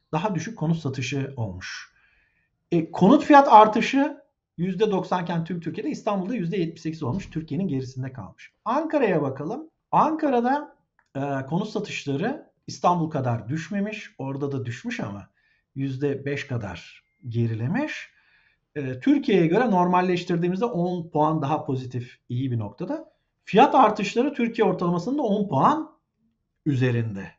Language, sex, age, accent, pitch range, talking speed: Turkish, male, 50-69, native, 135-215 Hz, 115 wpm